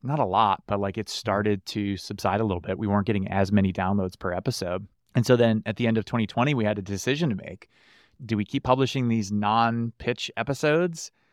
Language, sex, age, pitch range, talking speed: English, male, 30-49, 100-120 Hz, 215 wpm